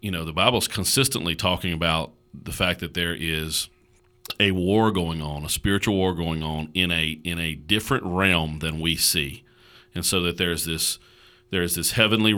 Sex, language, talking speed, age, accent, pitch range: male, English, 190 wpm, 40-59, American, 85-105 Hz